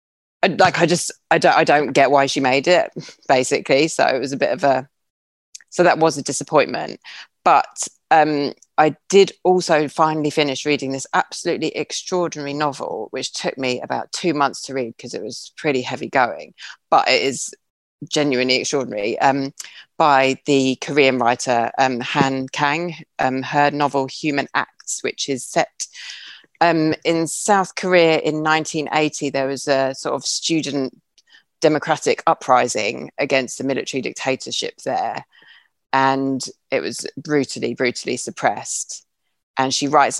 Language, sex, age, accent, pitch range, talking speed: English, female, 30-49, British, 130-160 Hz, 150 wpm